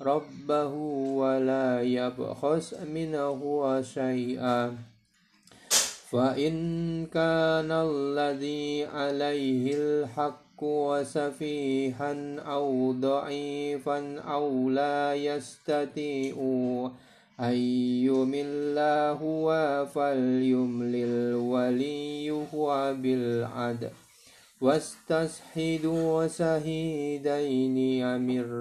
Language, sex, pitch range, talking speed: Indonesian, male, 125-145 Hz, 55 wpm